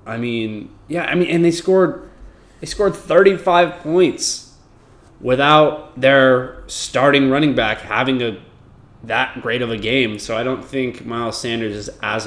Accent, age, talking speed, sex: American, 20-39, 155 wpm, male